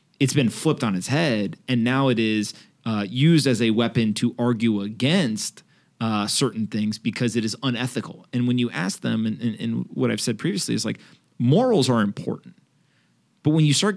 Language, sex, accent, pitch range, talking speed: English, male, American, 115-145 Hz, 200 wpm